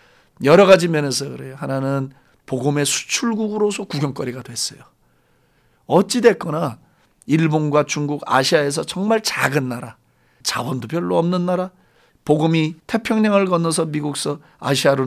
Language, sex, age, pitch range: Korean, male, 40-59, 125-190 Hz